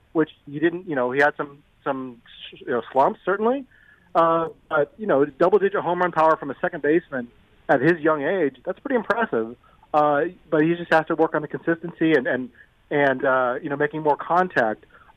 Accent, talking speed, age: American, 200 wpm, 30-49